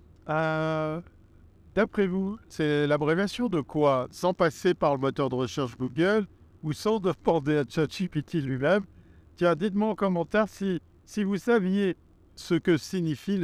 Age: 50-69